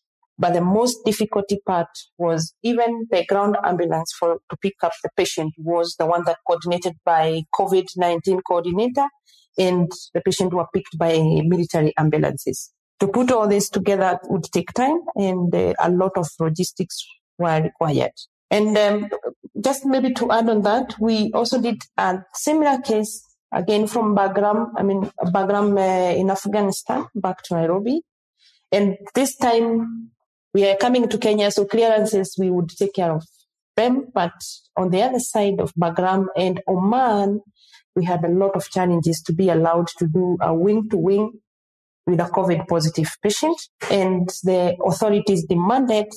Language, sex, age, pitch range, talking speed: English, female, 40-59, 175-215 Hz, 160 wpm